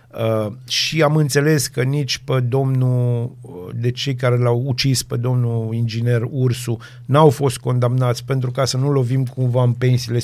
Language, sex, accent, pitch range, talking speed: Romanian, male, native, 120-135 Hz, 165 wpm